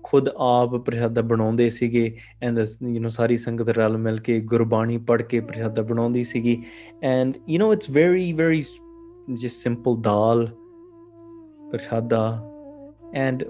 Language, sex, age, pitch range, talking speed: English, male, 20-39, 115-140 Hz, 75 wpm